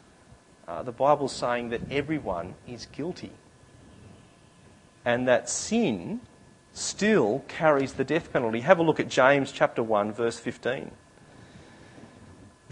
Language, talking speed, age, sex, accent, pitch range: English, 120 wpm, 40-59, male, Australian, 125-165 Hz